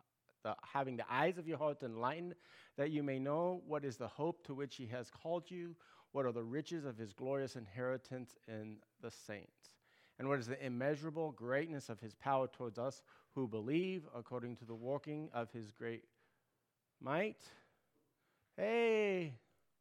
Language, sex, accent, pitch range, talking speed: English, male, American, 120-150 Hz, 165 wpm